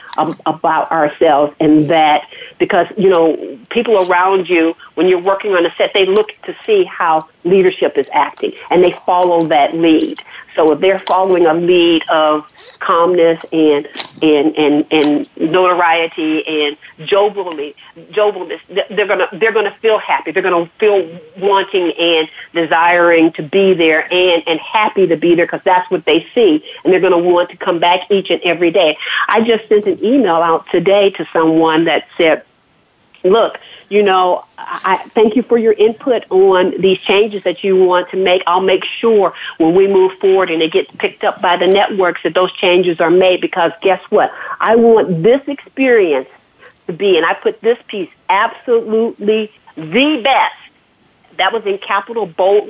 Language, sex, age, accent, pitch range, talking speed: English, female, 50-69, American, 170-215 Hz, 170 wpm